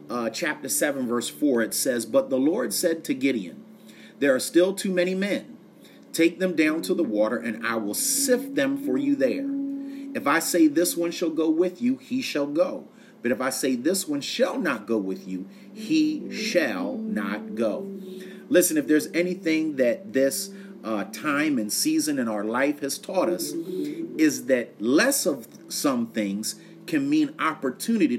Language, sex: English, male